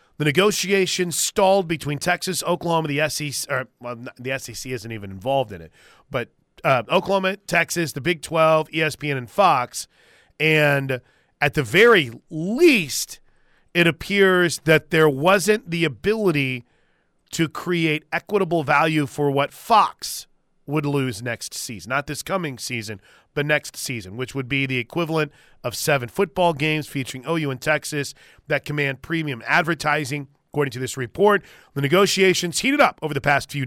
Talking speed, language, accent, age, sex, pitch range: 150 wpm, English, American, 30-49, male, 135-175 Hz